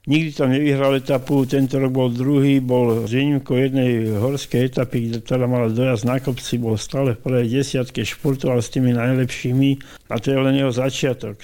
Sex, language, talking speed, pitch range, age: male, Slovak, 185 wpm, 115-130 Hz, 60-79